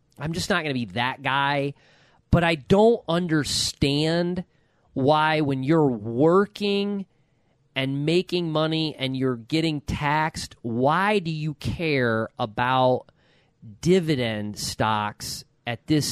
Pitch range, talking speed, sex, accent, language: 130-175 Hz, 120 wpm, male, American, English